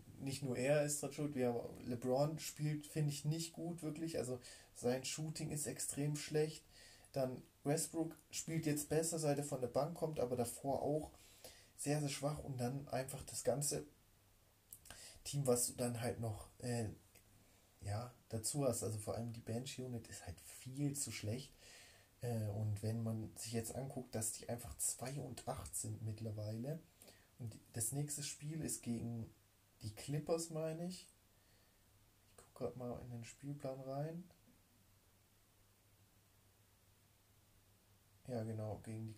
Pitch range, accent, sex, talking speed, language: 105-140 Hz, German, male, 150 wpm, German